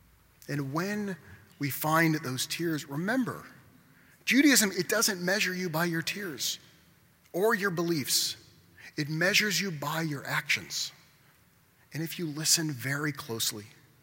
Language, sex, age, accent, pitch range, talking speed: English, male, 30-49, American, 130-170 Hz, 130 wpm